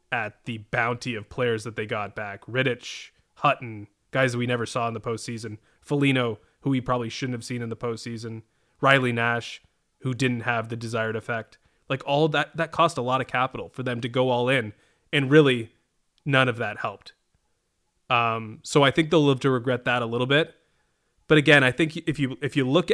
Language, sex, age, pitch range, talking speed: English, male, 20-39, 115-135 Hz, 205 wpm